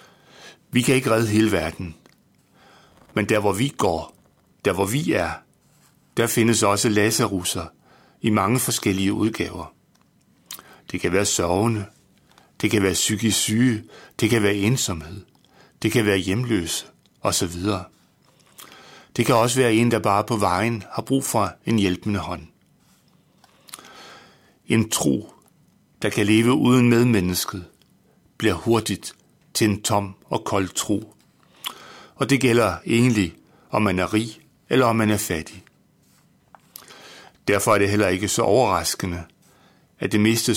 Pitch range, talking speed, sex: 95-115 Hz, 140 wpm, male